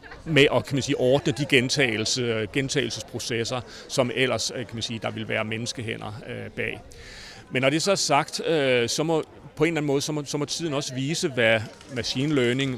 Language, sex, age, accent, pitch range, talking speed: Danish, male, 40-59, native, 115-140 Hz, 190 wpm